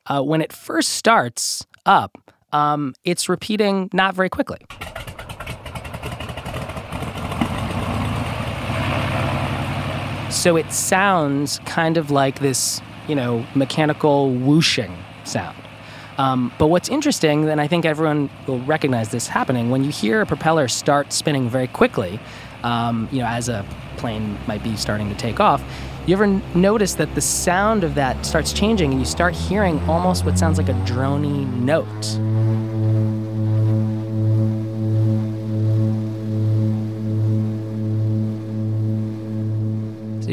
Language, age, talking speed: English, 20-39, 120 wpm